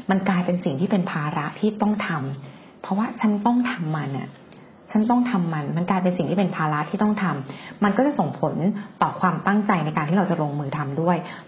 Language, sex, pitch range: Thai, female, 165-205 Hz